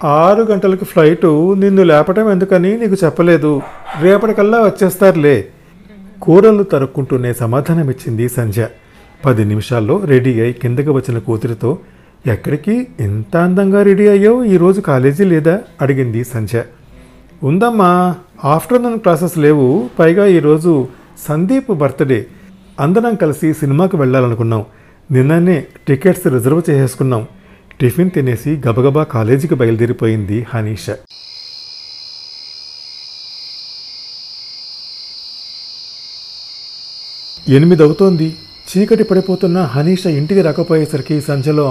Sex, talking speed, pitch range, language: male, 85 wpm, 130-180 Hz, Telugu